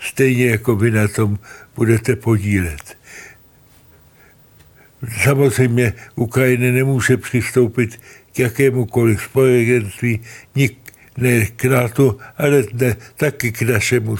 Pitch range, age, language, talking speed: 110-130 Hz, 60-79, Czech, 95 wpm